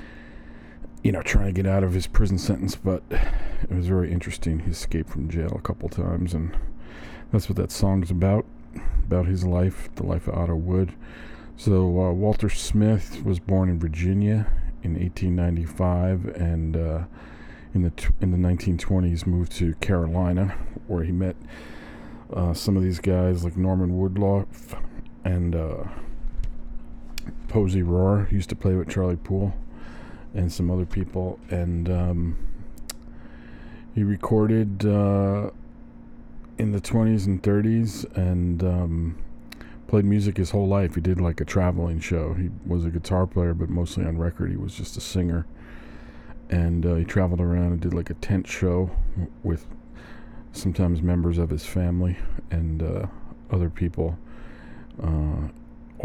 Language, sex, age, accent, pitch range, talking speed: English, male, 40-59, American, 85-95 Hz, 155 wpm